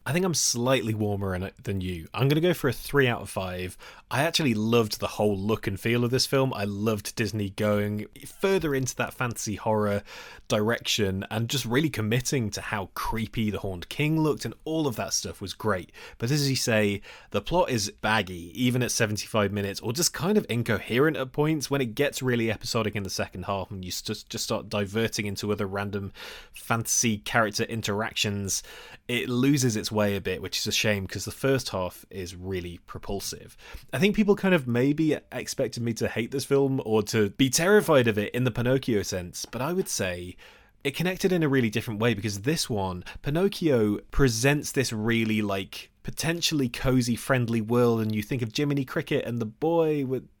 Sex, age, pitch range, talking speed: male, 20-39, 105-140 Hz, 200 wpm